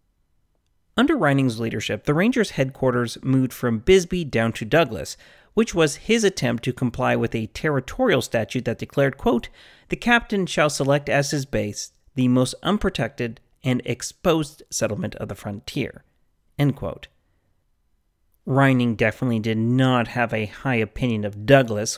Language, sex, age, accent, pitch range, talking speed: English, male, 30-49, American, 110-150 Hz, 145 wpm